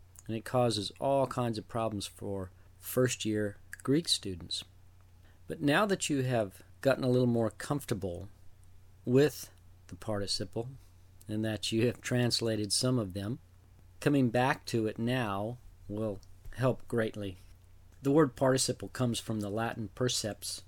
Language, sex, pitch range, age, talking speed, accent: English, male, 95-125 Hz, 40-59, 140 wpm, American